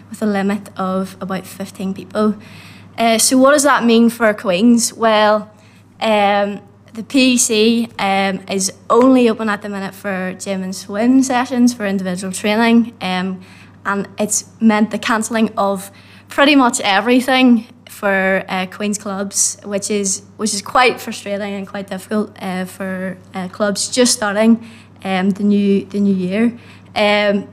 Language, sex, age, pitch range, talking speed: English, female, 20-39, 195-235 Hz, 155 wpm